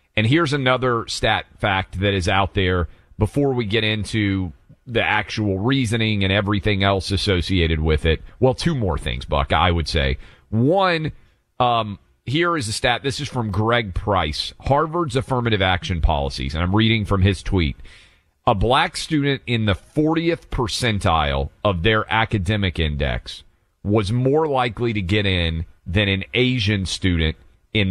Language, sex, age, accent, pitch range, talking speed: English, male, 40-59, American, 90-120 Hz, 155 wpm